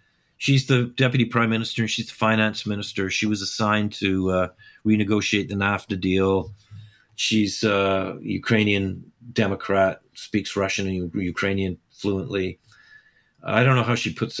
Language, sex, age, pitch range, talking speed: English, male, 50-69, 105-140 Hz, 145 wpm